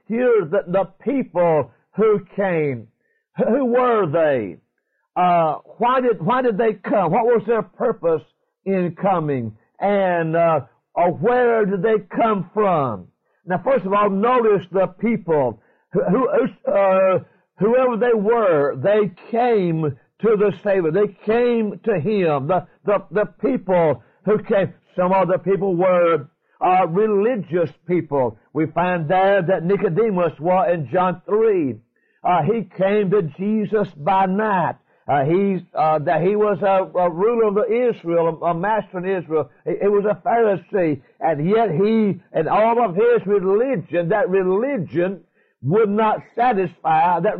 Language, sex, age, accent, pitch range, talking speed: English, male, 50-69, American, 175-215 Hz, 145 wpm